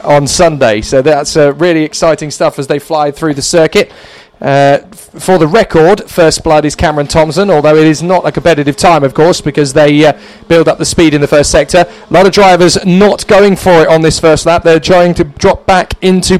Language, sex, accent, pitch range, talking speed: English, male, British, 160-210 Hz, 230 wpm